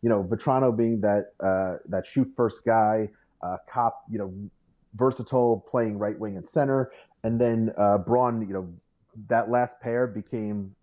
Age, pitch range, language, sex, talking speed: 30-49, 100-125 Hz, English, male, 165 wpm